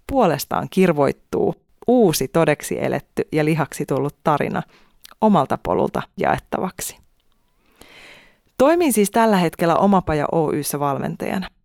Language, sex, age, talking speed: Finnish, female, 30-49, 100 wpm